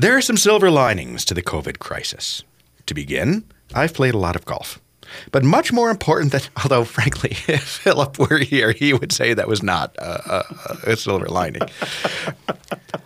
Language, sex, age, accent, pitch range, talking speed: English, male, 40-59, American, 95-140 Hz, 180 wpm